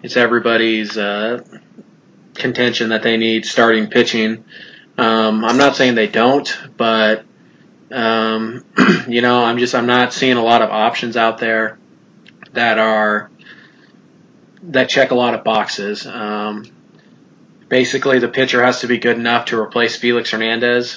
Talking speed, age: 145 wpm, 20-39